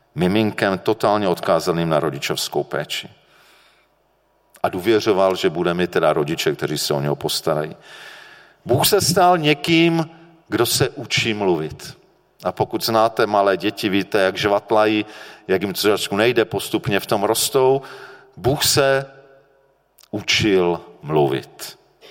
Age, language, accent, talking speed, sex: 40-59, Czech, native, 125 wpm, male